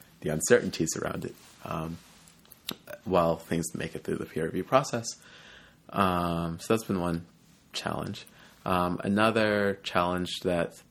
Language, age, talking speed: English, 30-49, 130 wpm